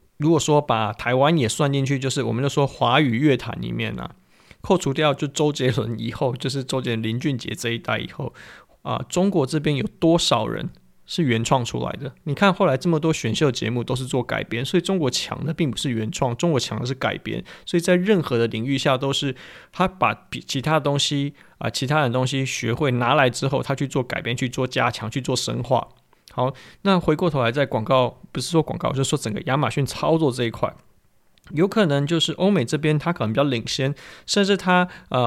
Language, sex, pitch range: Chinese, male, 125-160 Hz